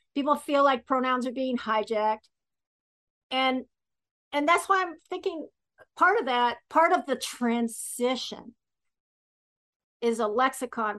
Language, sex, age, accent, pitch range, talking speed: English, female, 50-69, American, 220-265 Hz, 125 wpm